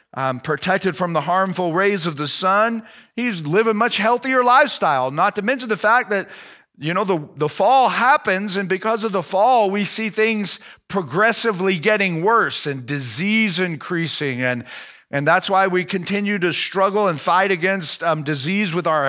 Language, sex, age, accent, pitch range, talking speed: English, male, 40-59, American, 175-225 Hz, 175 wpm